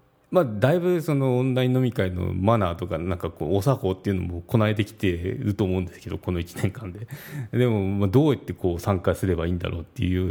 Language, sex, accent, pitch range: Japanese, male, native, 90-120 Hz